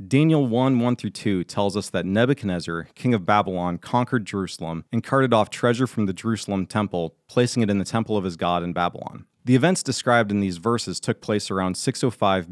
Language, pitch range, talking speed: English, 95-120 Hz, 195 wpm